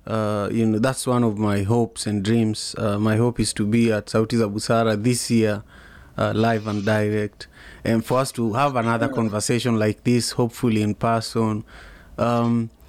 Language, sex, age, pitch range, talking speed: English, male, 30-49, 105-120 Hz, 175 wpm